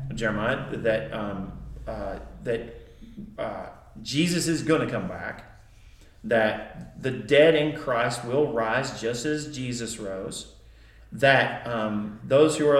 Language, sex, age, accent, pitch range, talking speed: English, male, 40-59, American, 110-145 Hz, 130 wpm